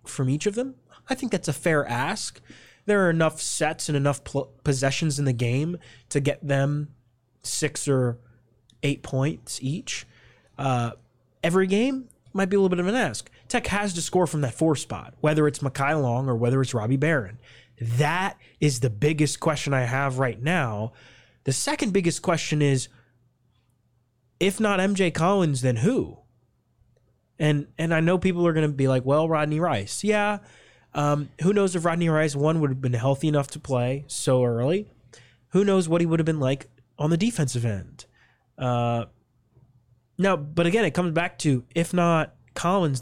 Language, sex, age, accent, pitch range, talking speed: English, male, 20-39, American, 125-170 Hz, 180 wpm